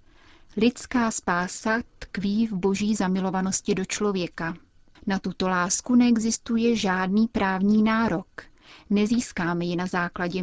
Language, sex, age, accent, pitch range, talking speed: Czech, female, 30-49, native, 185-225 Hz, 110 wpm